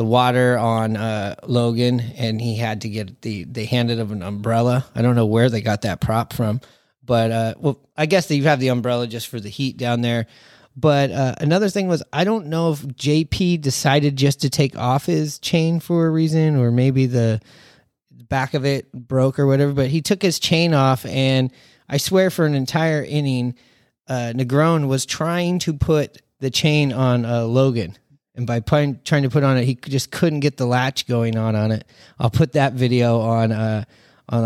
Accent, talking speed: American, 200 wpm